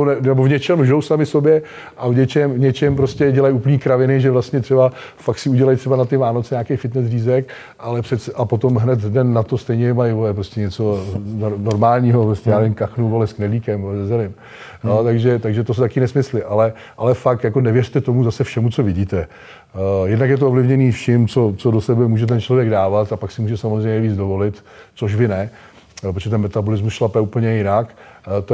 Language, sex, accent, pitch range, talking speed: Czech, male, native, 110-130 Hz, 195 wpm